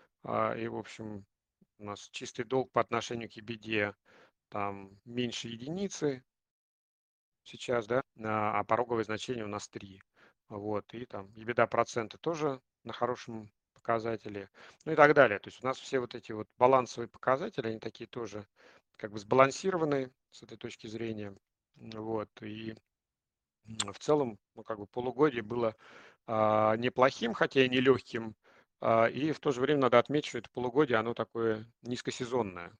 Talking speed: 145 wpm